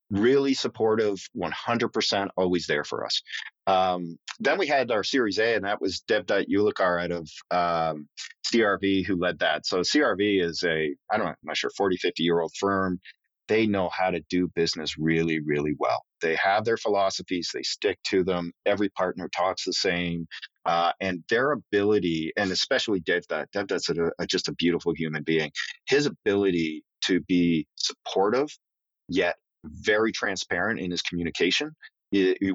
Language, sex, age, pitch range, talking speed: English, male, 40-59, 85-100 Hz, 170 wpm